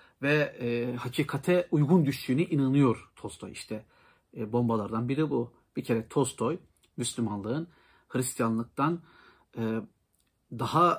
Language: Turkish